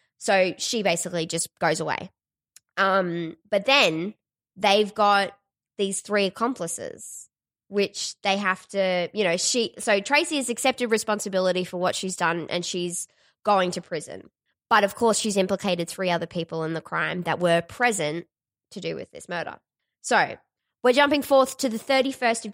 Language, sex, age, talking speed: English, female, 20-39, 165 wpm